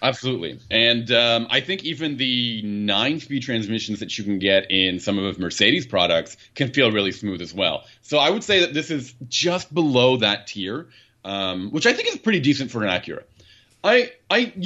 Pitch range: 100-140 Hz